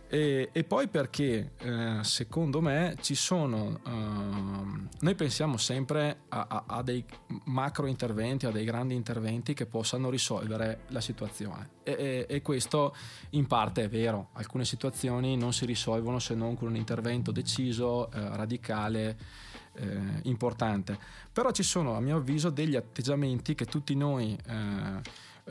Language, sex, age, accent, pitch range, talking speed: Italian, male, 20-39, native, 115-140 Hz, 145 wpm